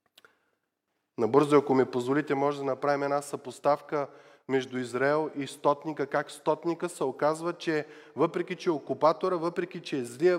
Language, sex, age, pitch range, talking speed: Bulgarian, male, 20-39, 135-170 Hz, 150 wpm